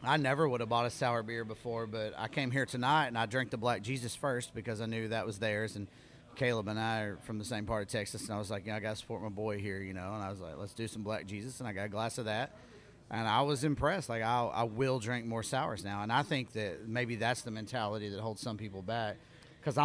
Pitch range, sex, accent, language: 105-125 Hz, male, American, English